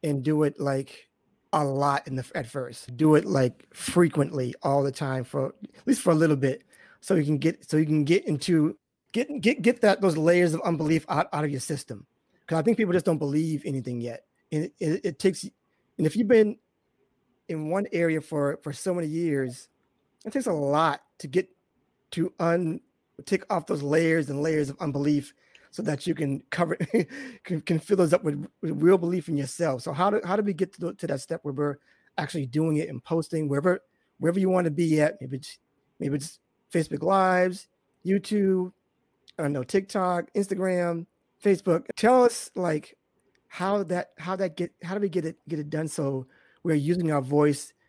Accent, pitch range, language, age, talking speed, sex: American, 145-185 Hz, English, 30-49, 205 wpm, male